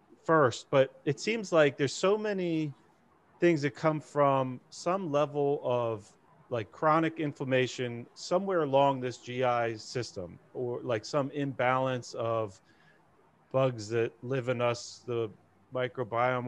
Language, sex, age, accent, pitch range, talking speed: English, male, 40-59, American, 125-165 Hz, 125 wpm